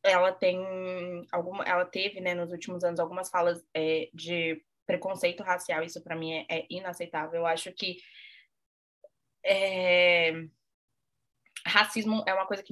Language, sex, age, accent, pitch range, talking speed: Portuguese, female, 20-39, Brazilian, 165-215 Hz, 140 wpm